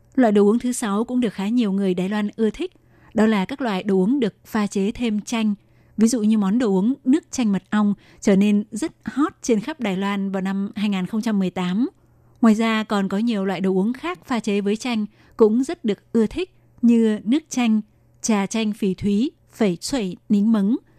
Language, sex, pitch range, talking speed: Vietnamese, female, 195-230 Hz, 215 wpm